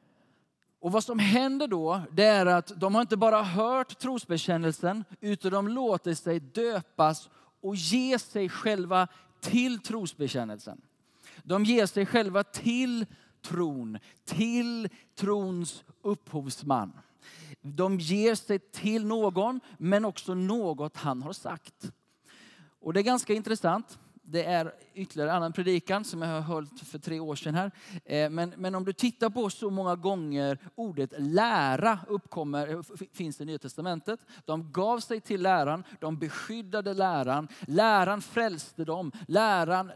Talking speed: 140 wpm